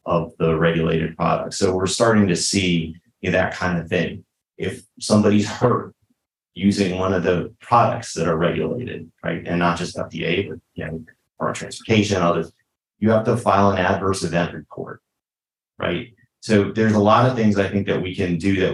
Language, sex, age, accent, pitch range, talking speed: English, male, 30-49, American, 85-100 Hz, 190 wpm